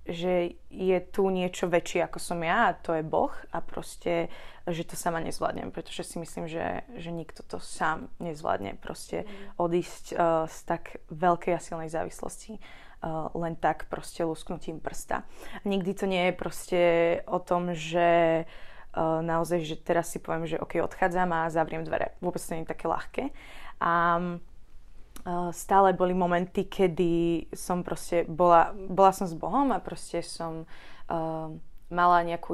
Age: 20-39